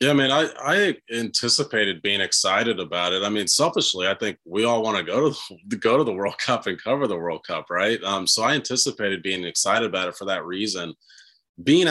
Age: 30-49